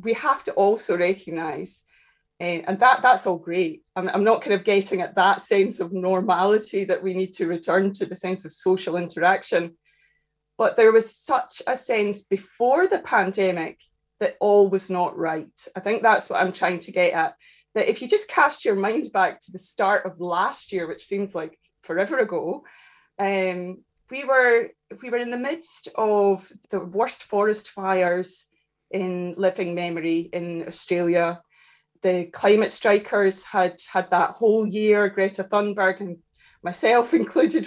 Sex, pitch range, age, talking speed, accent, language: female, 180-220 Hz, 20-39, 170 wpm, British, English